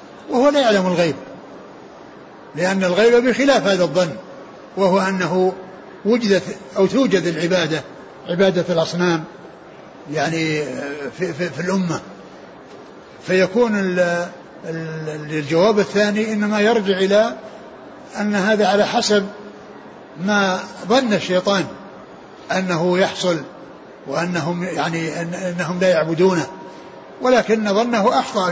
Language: Arabic